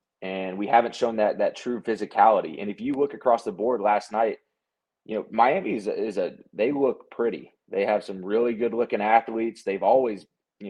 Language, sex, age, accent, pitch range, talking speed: English, male, 20-39, American, 105-125 Hz, 195 wpm